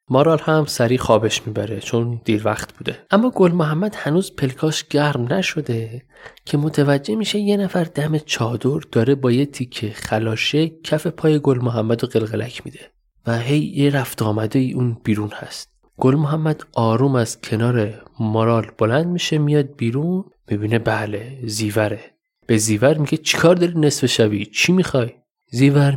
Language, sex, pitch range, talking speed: Persian, male, 115-150 Hz, 150 wpm